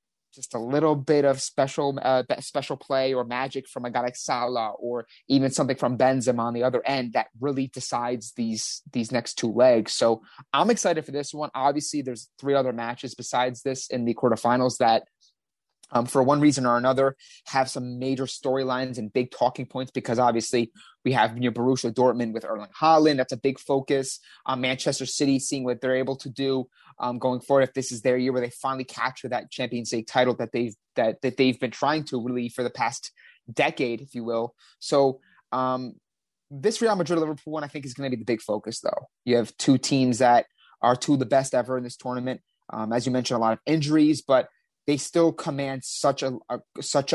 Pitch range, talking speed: 120-135 Hz, 210 wpm